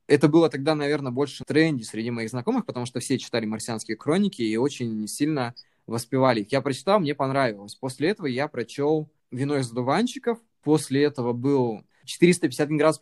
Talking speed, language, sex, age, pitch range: 170 wpm, Russian, male, 20-39, 115-150 Hz